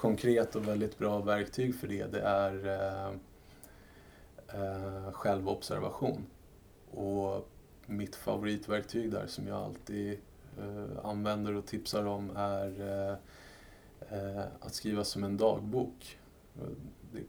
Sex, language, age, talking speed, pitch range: male, Swedish, 20-39, 115 wpm, 100-110 Hz